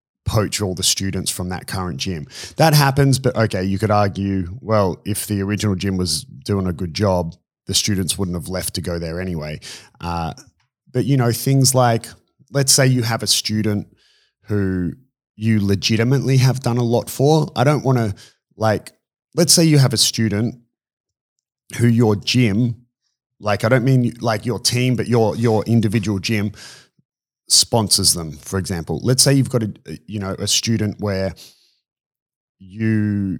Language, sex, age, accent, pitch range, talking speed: English, male, 30-49, Australian, 95-120 Hz, 170 wpm